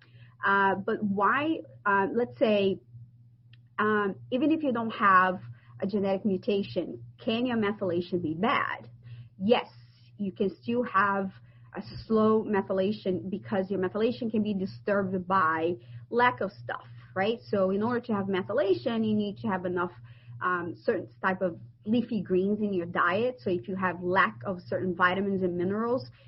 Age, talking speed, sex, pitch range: 30-49, 160 wpm, female, 175-210 Hz